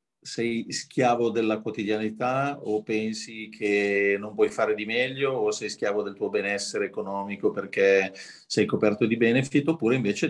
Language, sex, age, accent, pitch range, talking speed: Italian, male, 40-59, native, 100-115 Hz, 150 wpm